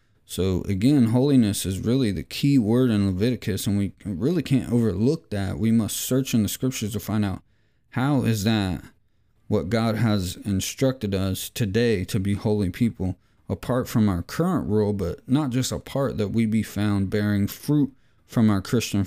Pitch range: 100-125 Hz